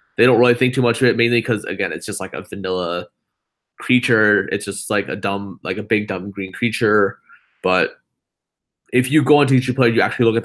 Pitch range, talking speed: 100-120 Hz, 225 wpm